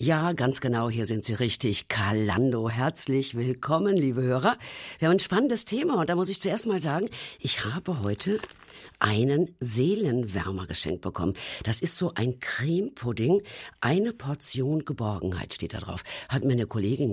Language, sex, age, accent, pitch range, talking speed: German, female, 50-69, German, 115-160 Hz, 160 wpm